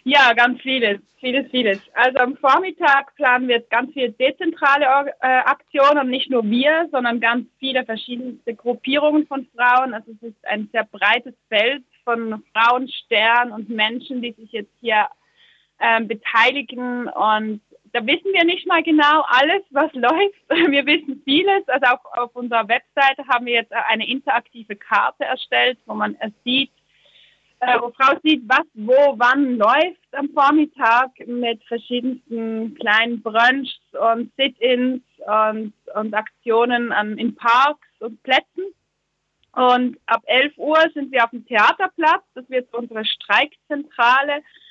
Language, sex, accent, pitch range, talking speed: German, female, German, 235-285 Hz, 145 wpm